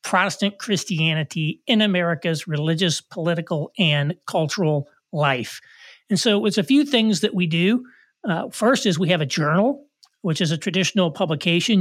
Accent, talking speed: American, 150 wpm